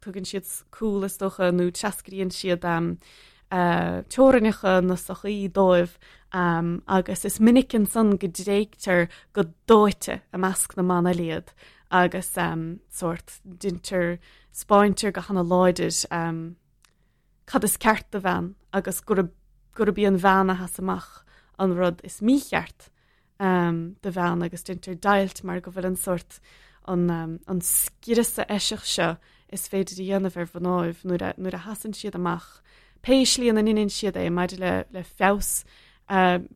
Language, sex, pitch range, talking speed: English, female, 175-205 Hz, 120 wpm